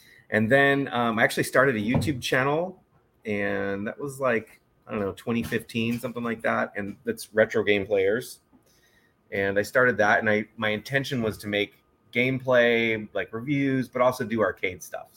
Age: 30-49